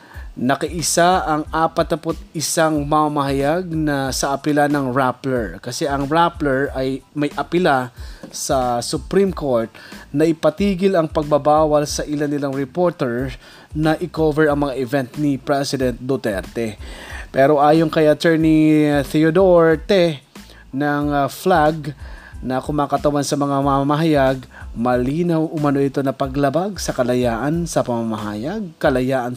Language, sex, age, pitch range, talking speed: Filipino, male, 20-39, 130-160 Hz, 115 wpm